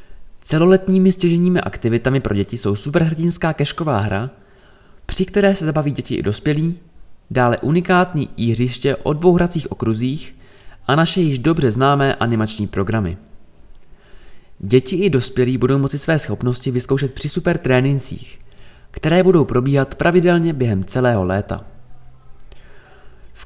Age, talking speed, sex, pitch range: 20-39, 125 wpm, male, 110-160 Hz